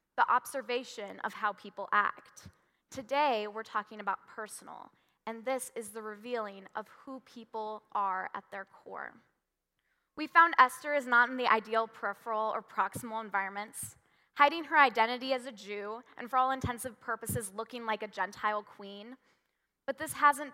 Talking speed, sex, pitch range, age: 160 wpm, female, 210-265 Hz, 10-29